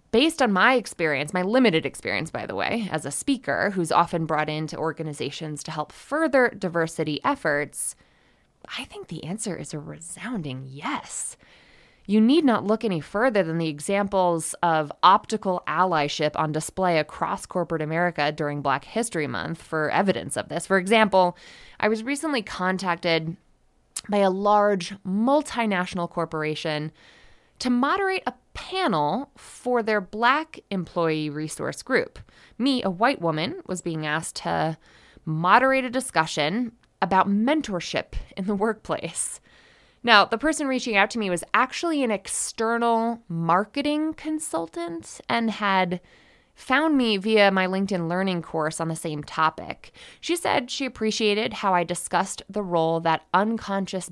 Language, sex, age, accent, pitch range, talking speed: English, female, 20-39, American, 160-230 Hz, 145 wpm